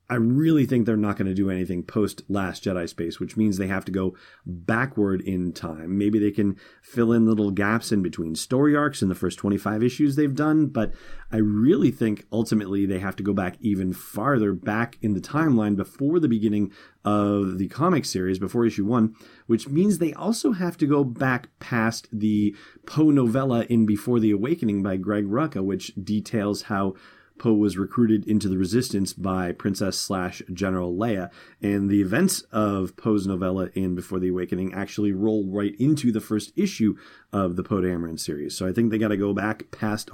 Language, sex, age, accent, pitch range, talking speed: English, male, 30-49, American, 100-120 Hz, 190 wpm